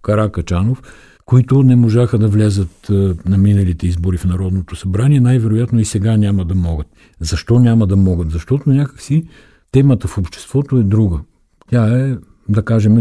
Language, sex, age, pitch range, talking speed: Bulgarian, male, 60-79, 90-115 Hz, 150 wpm